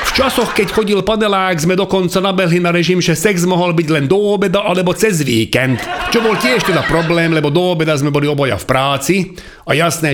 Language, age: Slovak, 40-59